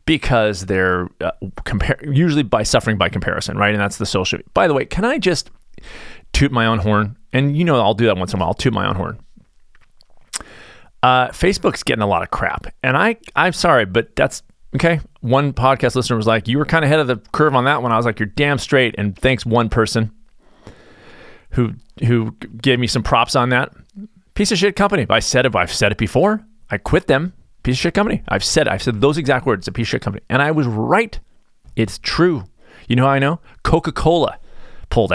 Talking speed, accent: 225 wpm, American